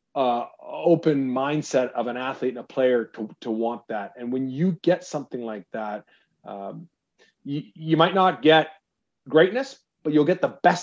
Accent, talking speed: American, 175 wpm